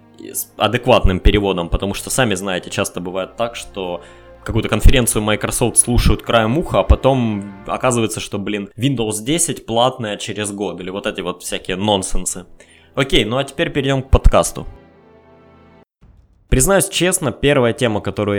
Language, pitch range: Russian, 95-115 Hz